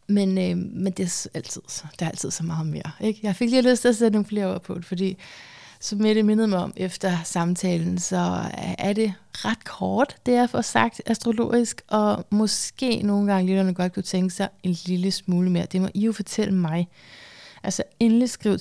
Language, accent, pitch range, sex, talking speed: Danish, native, 170-205 Hz, female, 220 wpm